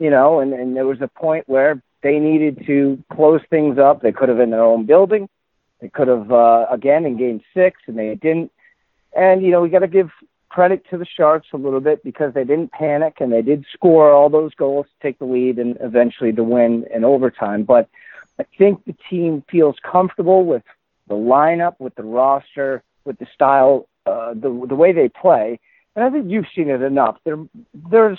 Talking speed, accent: 210 wpm, American